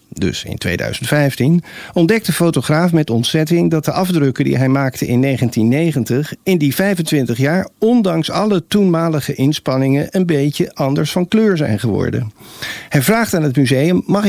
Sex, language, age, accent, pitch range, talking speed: male, Dutch, 50-69, Dutch, 125-170 Hz, 155 wpm